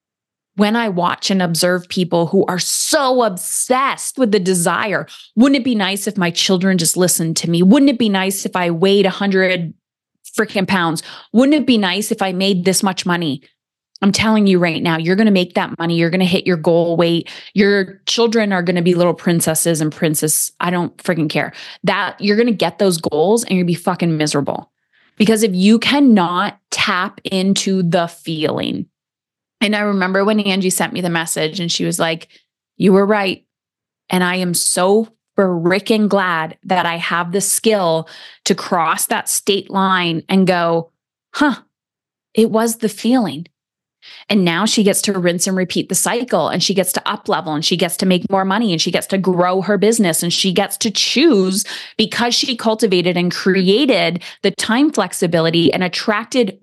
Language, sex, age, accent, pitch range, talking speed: English, female, 20-39, American, 175-215 Hz, 190 wpm